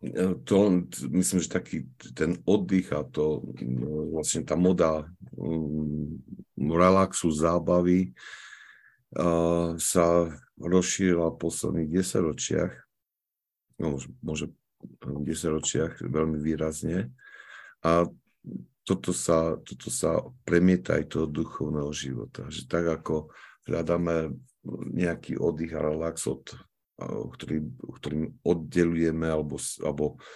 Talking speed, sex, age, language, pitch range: 90 wpm, male, 50-69, Slovak, 75-85 Hz